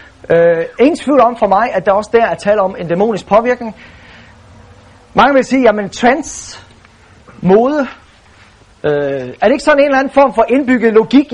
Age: 30-49